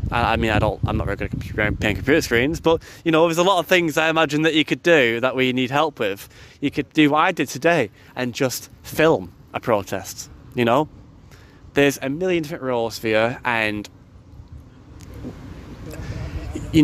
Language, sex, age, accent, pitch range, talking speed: English, male, 20-39, British, 105-140 Hz, 195 wpm